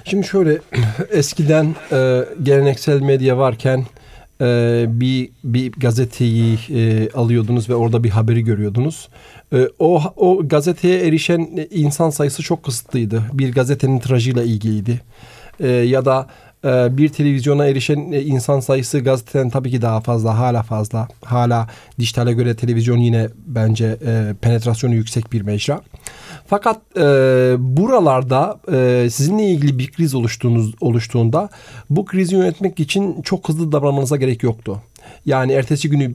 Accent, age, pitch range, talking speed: native, 40-59, 120-150 Hz, 120 wpm